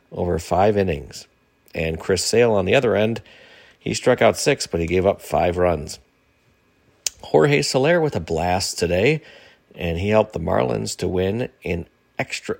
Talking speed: 165 wpm